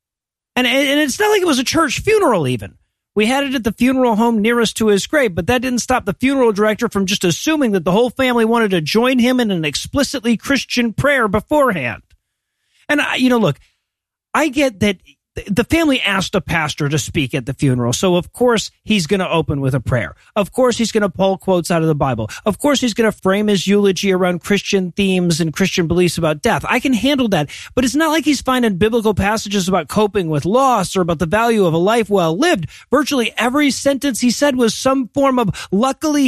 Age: 40-59